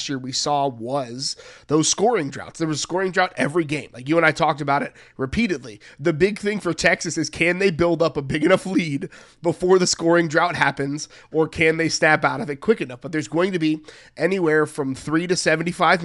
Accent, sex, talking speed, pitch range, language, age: American, male, 225 wpm, 140-170 Hz, English, 20-39